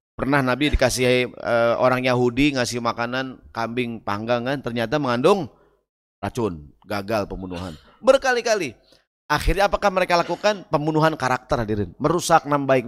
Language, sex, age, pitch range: Indonesian, male, 30-49, 110-155 Hz